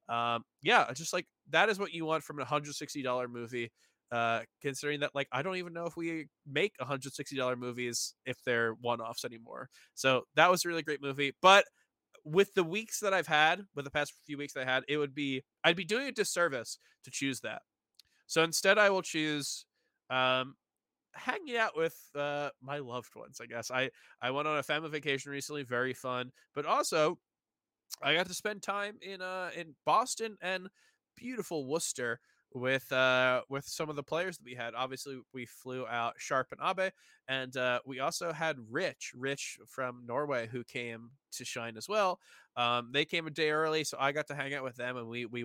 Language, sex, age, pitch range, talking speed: English, male, 20-39, 125-155 Hz, 205 wpm